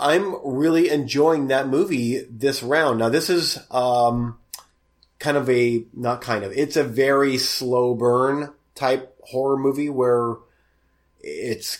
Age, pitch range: 30-49, 120-155 Hz